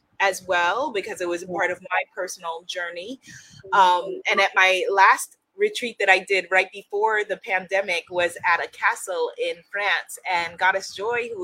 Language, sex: English, female